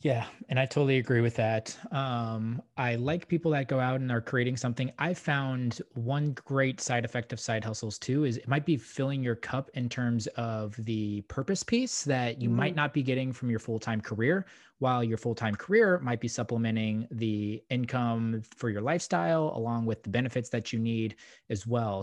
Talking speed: 195 wpm